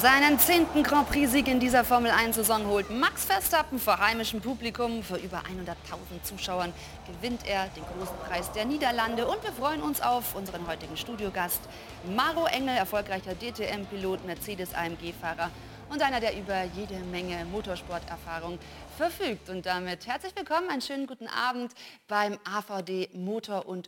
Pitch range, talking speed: 180-245 Hz, 140 wpm